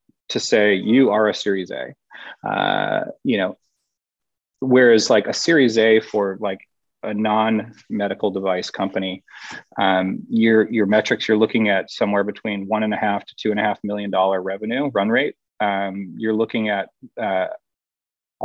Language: English